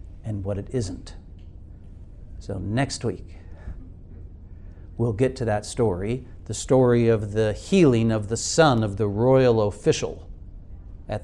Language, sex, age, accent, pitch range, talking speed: English, male, 60-79, American, 90-120 Hz, 135 wpm